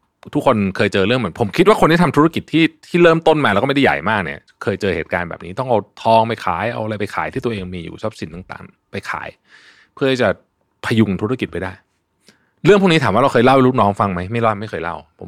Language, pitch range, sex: Thai, 95-145 Hz, male